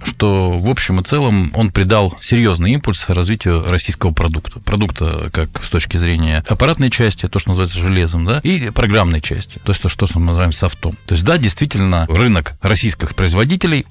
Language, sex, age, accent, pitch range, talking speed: Russian, male, 20-39, native, 85-115 Hz, 175 wpm